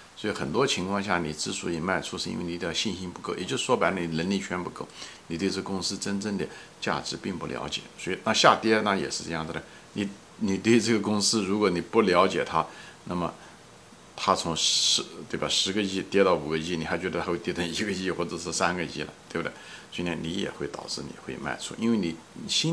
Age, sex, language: 60-79, male, Chinese